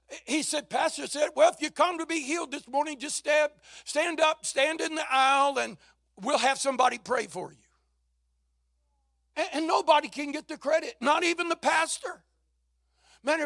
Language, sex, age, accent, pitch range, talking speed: English, male, 60-79, American, 205-315 Hz, 175 wpm